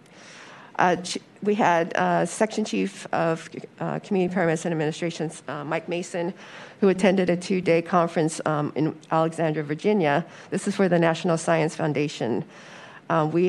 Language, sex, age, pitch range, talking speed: English, female, 50-69, 155-175 Hz, 140 wpm